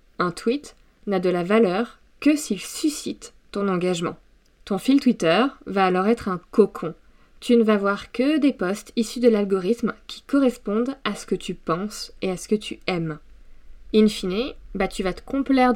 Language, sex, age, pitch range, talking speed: French, female, 20-39, 190-240 Hz, 185 wpm